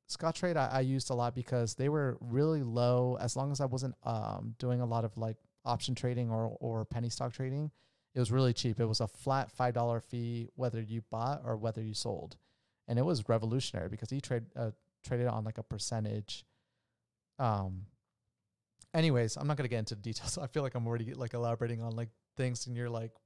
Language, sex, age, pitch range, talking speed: English, male, 30-49, 115-130 Hz, 215 wpm